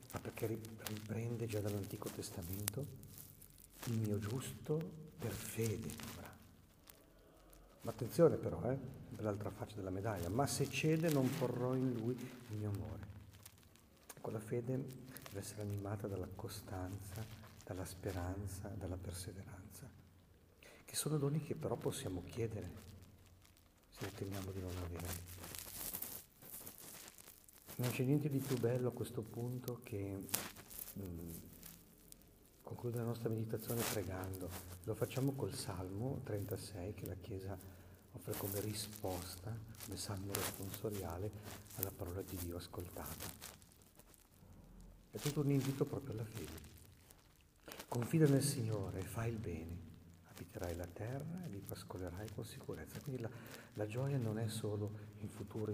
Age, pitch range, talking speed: 50-69, 95-120 Hz, 130 wpm